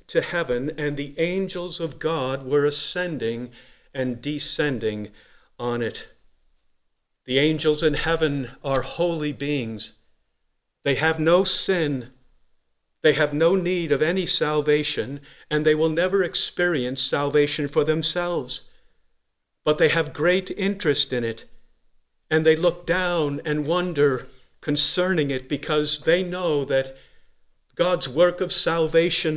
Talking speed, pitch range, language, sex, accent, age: 125 wpm, 130-175 Hz, English, male, American, 50-69